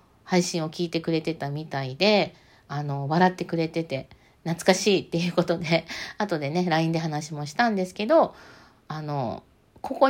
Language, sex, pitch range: Japanese, female, 150-210 Hz